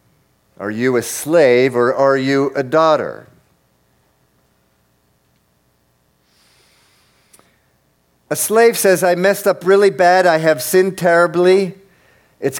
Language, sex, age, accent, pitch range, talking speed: English, male, 50-69, American, 115-175 Hz, 105 wpm